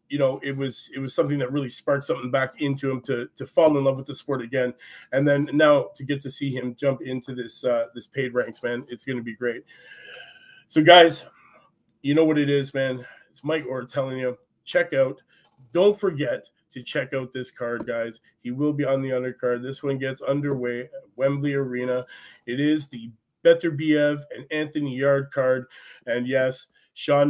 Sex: male